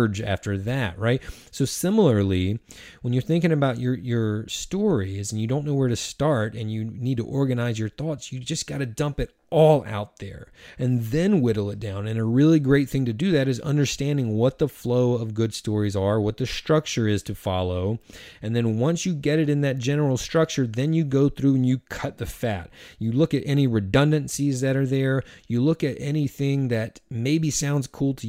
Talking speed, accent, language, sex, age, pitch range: 210 wpm, American, English, male, 30-49, 110-140 Hz